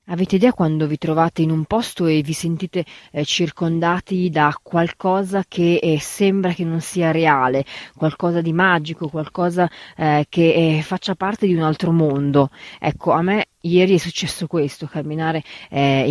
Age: 30-49